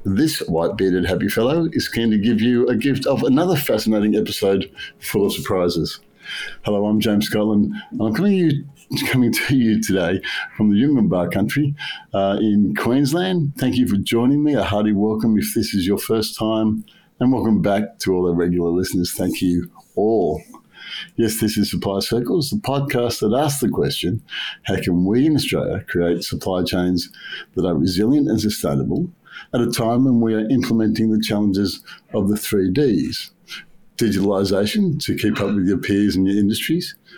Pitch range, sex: 100-120 Hz, male